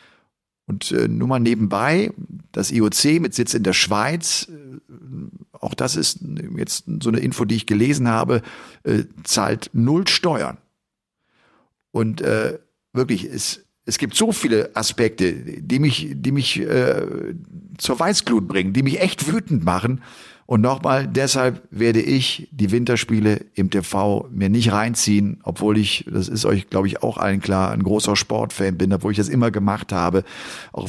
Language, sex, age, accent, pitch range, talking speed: German, male, 50-69, German, 100-130 Hz, 160 wpm